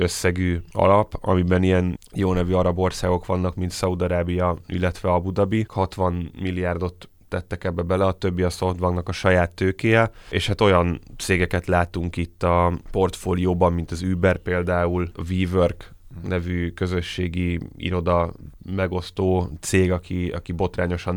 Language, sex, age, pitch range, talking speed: Hungarian, male, 20-39, 90-95 Hz, 135 wpm